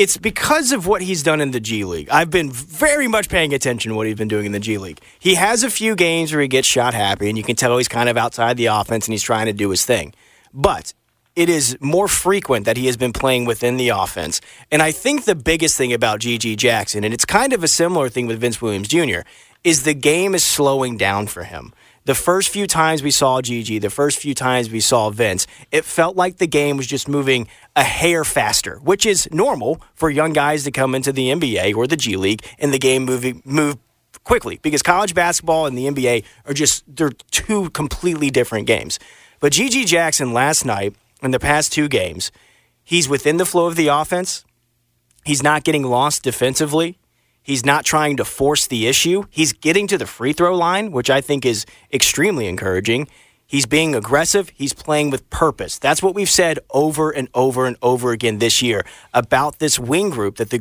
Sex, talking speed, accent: male, 215 wpm, American